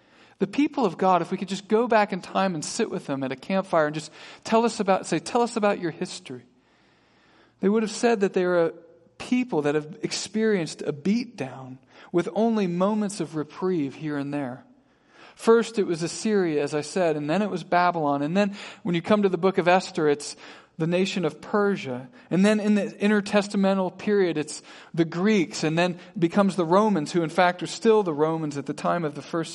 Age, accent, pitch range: 40-59, American, 165-210 Hz